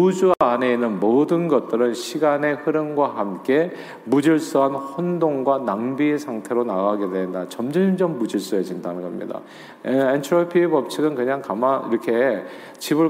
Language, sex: Korean, male